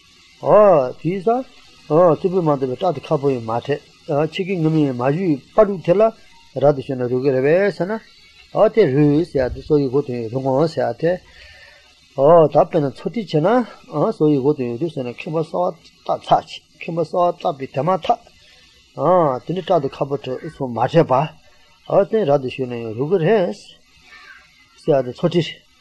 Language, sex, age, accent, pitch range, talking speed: English, male, 30-49, Indian, 130-185 Hz, 55 wpm